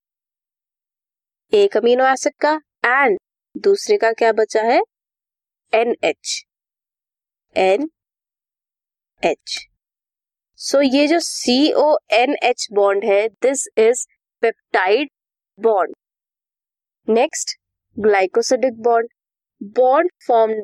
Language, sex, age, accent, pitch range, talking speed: English, female, 20-39, Indian, 225-360 Hz, 80 wpm